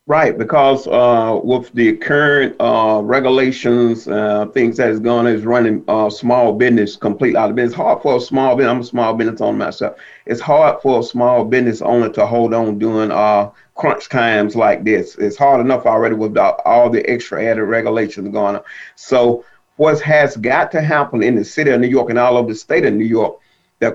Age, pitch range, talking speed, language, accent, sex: 40-59, 115-135 Hz, 215 wpm, English, American, male